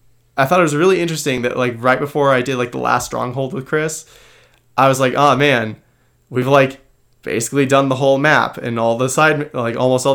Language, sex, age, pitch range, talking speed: English, male, 20-39, 115-135 Hz, 220 wpm